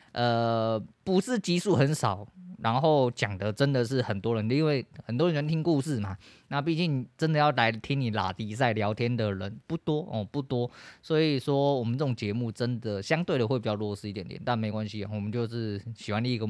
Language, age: Chinese, 20-39